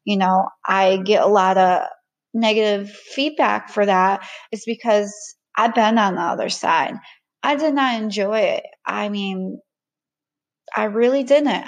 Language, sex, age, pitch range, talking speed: English, female, 30-49, 200-255 Hz, 150 wpm